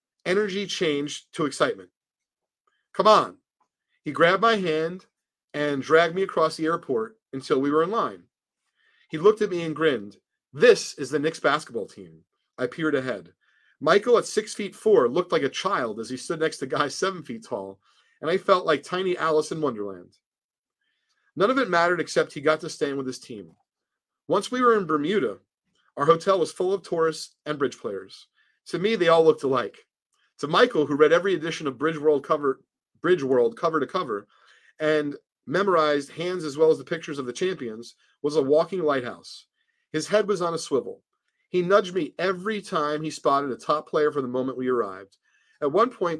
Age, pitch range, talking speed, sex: 40-59, 145-195 Hz, 190 wpm, male